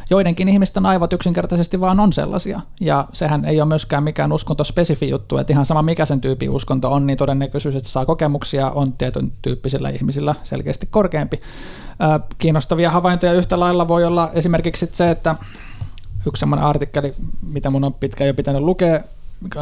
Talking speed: 165 wpm